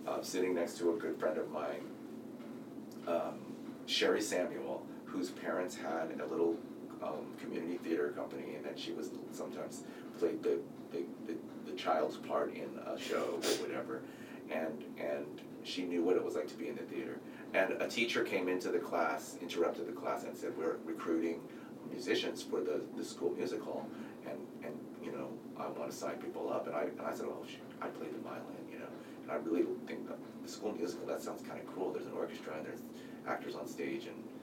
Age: 30-49